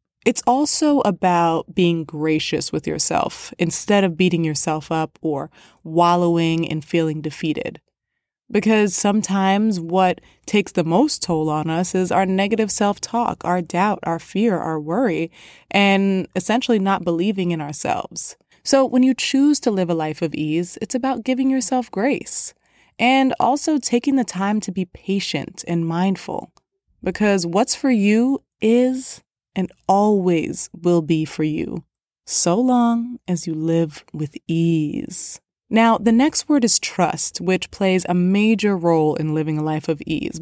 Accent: American